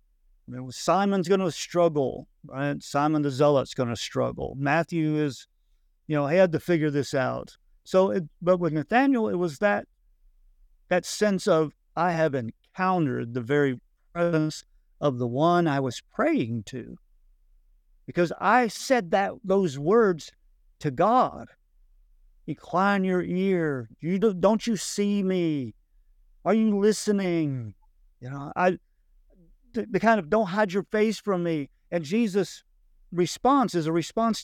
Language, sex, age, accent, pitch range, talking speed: English, male, 50-69, American, 125-180 Hz, 150 wpm